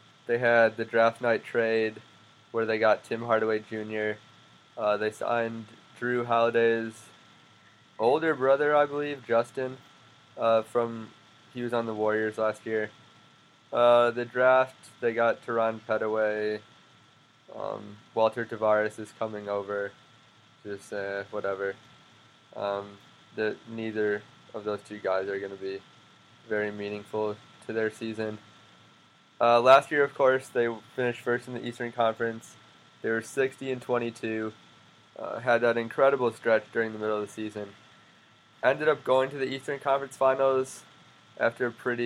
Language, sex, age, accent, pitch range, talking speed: English, male, 20-39, American, 105-120 Hz, 145 wpm